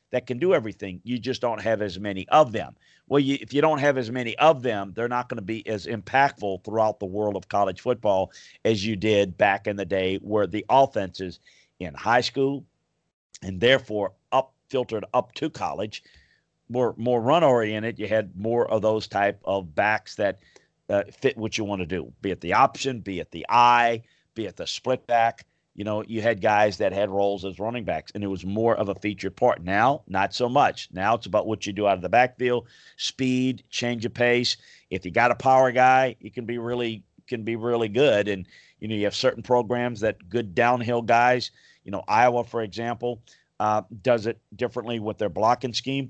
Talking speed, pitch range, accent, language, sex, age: 210 wpm, 105-125 Hz, American, English, male, 50-69